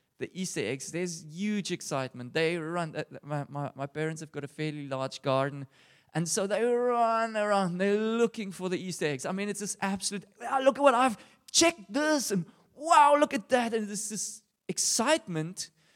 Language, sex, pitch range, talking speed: English, male, 170-245 Hz, 190 wpm